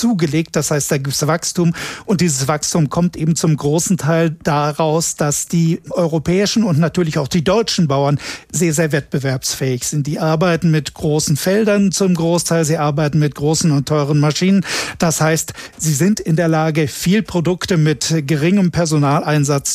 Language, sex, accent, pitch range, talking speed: German, male, German, 150-175 Hz, 165 wpm